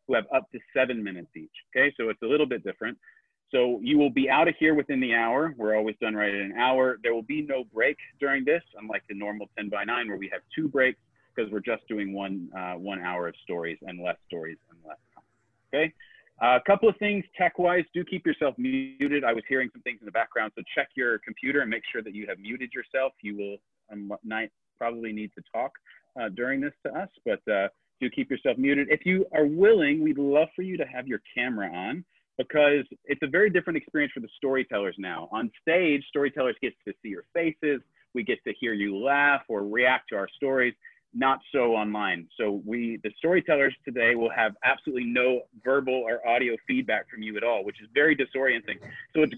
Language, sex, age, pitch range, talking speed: English, male, 40-59, 110-155 Hz, 225 wpm